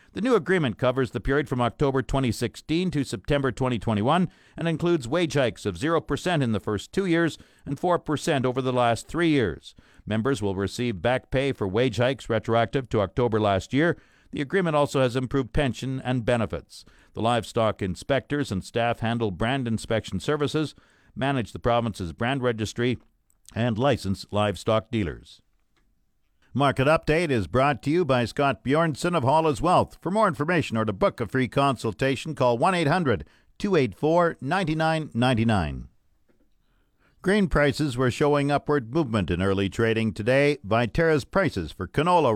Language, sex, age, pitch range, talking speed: English, male, 50-69, 115-150 Hz, 155 wpm